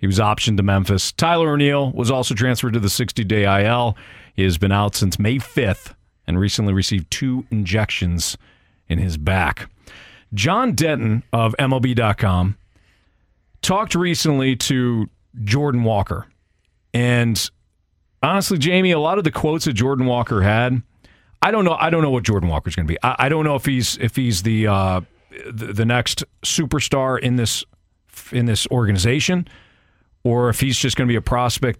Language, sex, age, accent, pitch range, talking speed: English, male, 40-59, American, 95-130 Hz, 170 wpm